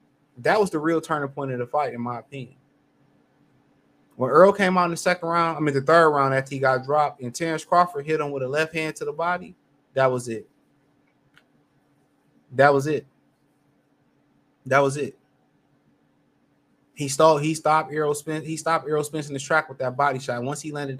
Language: English